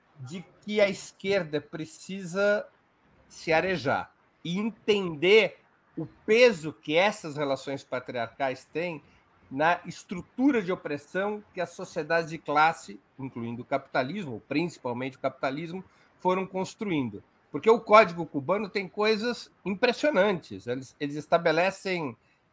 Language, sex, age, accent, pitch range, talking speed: Portuguese, male, 50-69, Brazilian, 140-210 Hz, 115 wpm